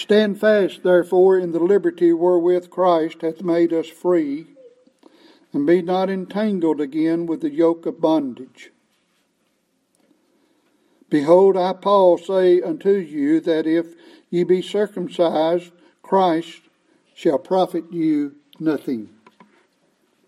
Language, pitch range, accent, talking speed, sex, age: English, 165-215 Hz, American, 110 wpm, male, 60-79